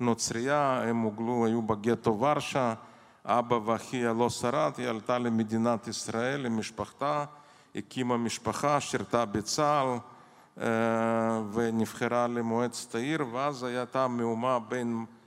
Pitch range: 115-140 Hz